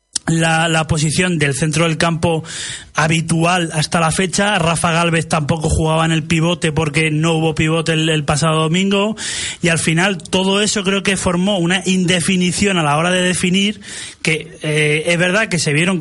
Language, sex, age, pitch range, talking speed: Spanish, male, 30-49, 155-180 Hz, 180 wpm